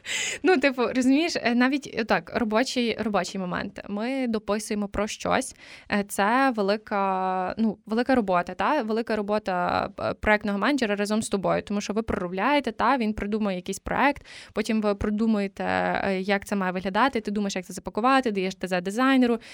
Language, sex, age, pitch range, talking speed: Ukrainian, female, 20-39, 200-240 Hz, 145 wpm